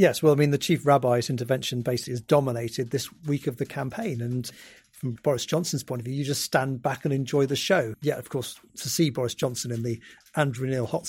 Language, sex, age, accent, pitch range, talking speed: English, male, 40-59, British, 120-145 Hz, 235 wpm